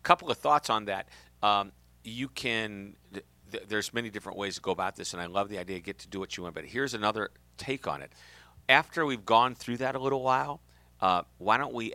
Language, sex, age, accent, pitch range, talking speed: English, male, 50-69, American, 90-120 Hz, 240 wpm